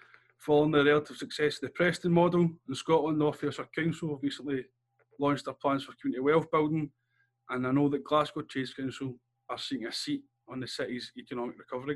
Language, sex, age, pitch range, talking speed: English, male, 20-39, 130-160 Hz, 185 wpm